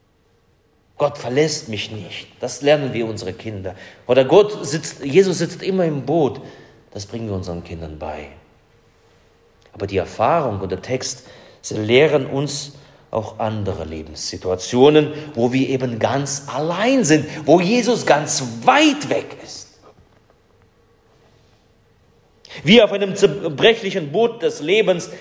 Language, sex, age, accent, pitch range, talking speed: German, male, 30-49, German, 110-170 Hz, 125 wpm